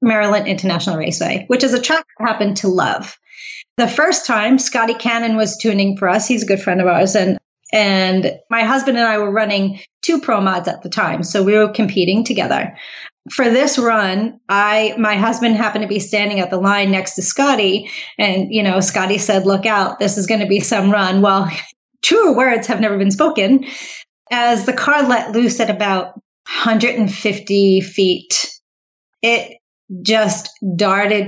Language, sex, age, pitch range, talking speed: English, female, 30-49, 195-240 Hz, 180 wpm